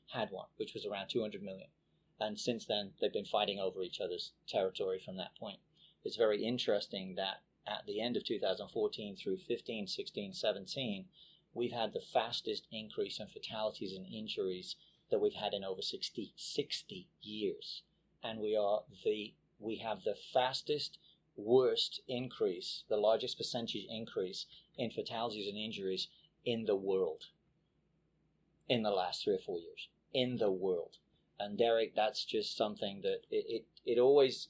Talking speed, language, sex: 160 wpm, English, male